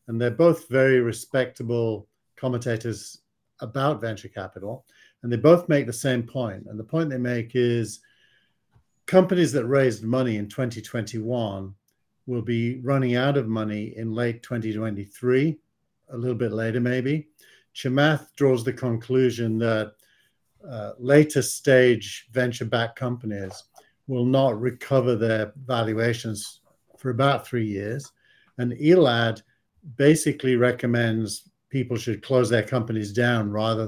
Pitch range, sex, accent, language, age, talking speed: 110-130 Hz, male, British, English, 50-69, 130 wpm